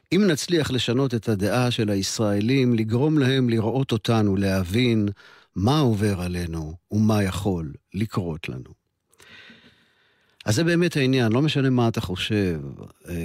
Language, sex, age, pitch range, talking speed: Hebrew, male, 50-69, 95-125 Hz, 125 wpm